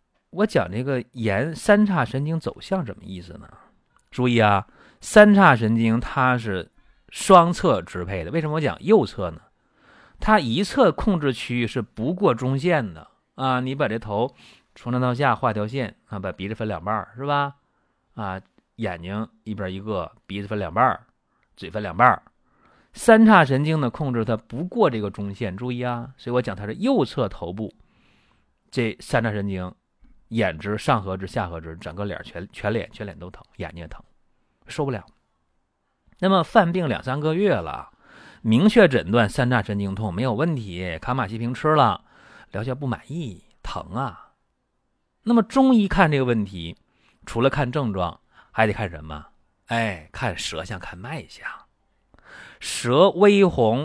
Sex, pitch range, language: male, 105-150 Hz, Chinese